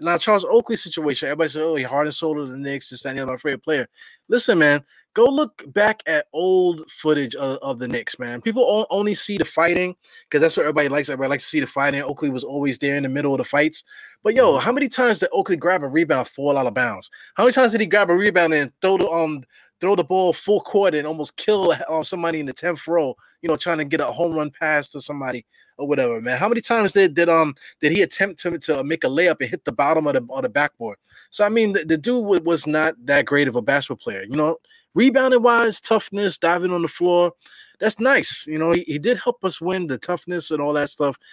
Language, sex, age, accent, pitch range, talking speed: English, male, 20-39, American, 145-205 Hz, 250 wpm